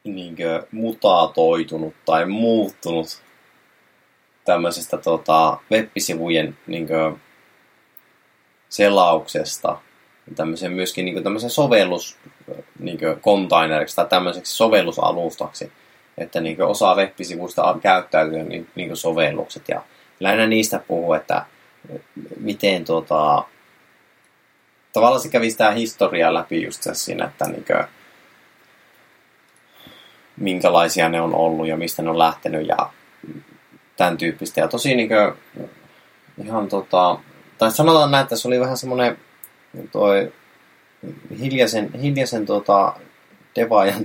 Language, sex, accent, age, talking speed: Finnish, male, native, 20-39, 100 wpm